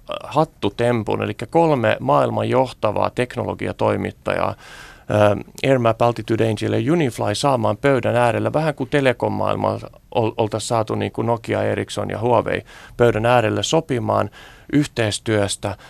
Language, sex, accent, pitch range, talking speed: Finnish, male, native, 105-135 Hz, 115 wpm